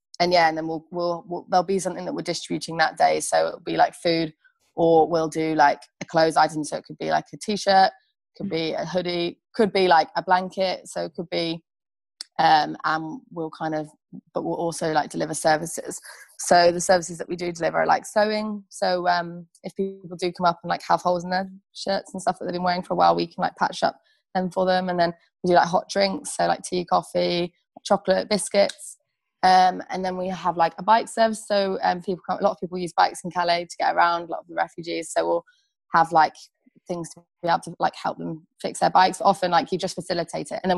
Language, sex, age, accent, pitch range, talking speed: English, female, 20-39, British, 160-185 Hz, 240 wpm